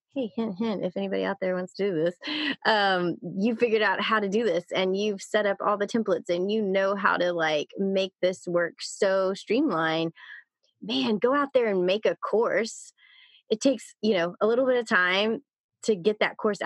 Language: English